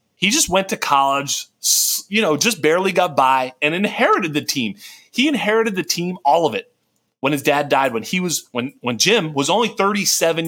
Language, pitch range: English, 140-180 Hz